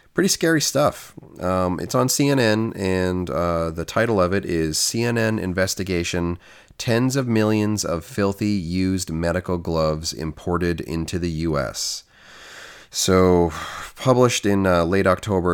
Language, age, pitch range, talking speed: English, 30-49, 85-105 Hz, 130 wpm